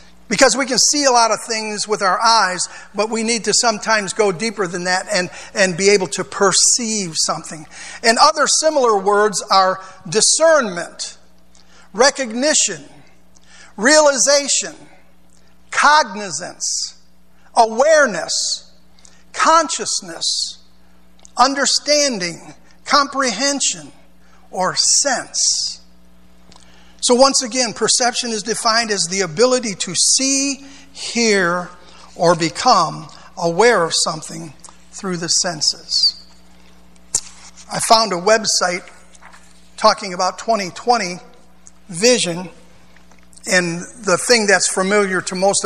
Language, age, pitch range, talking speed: English, 50-69, 165-225 Hz, 100 wpm